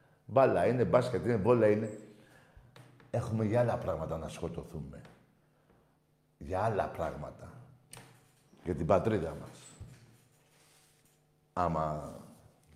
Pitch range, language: 105-145 Hz, Greek